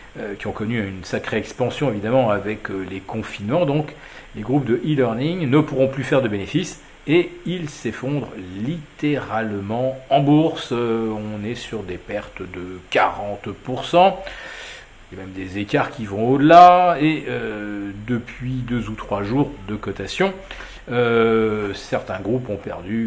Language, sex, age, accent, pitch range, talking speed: French, male, 40-59, French, 105-145 Hz, 150 wpm